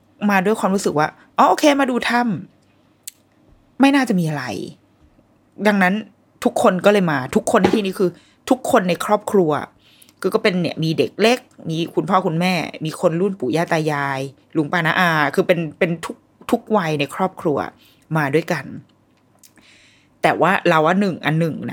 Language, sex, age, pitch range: Thai, female, 20-39, 150-200 Hz